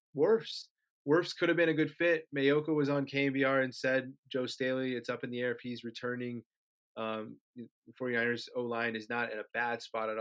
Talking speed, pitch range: 205 wpm, 120-145 Hz